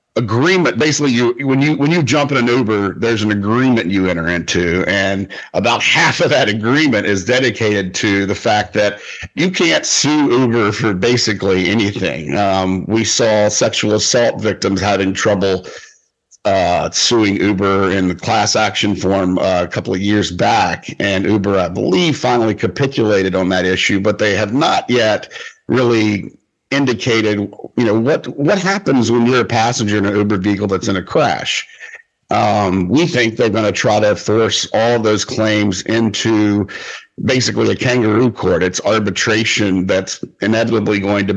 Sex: male